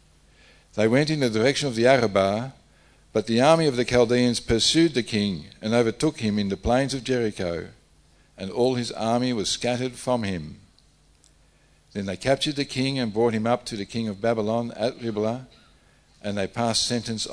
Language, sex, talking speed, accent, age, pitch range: English, male, 185 wpm, Australian, 60-79, 100-125 Hz